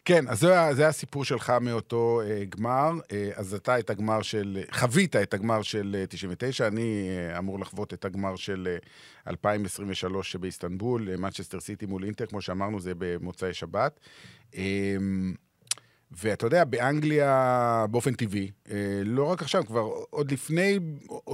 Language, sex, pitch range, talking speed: Hebrew, male, 95-130 Hz, 145 wpm